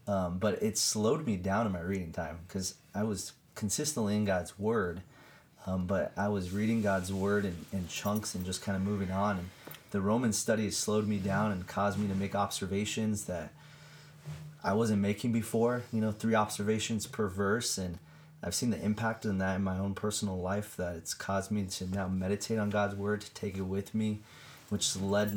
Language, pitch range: English, 95-110 Hz